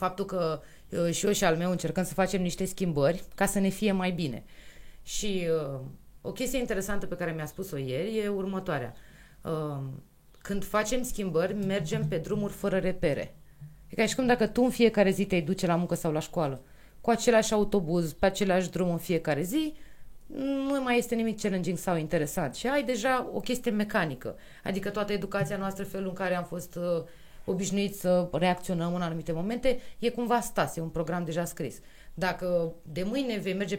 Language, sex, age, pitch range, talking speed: Romanian, female, 20-39, 165-205 Hz, 190 wpm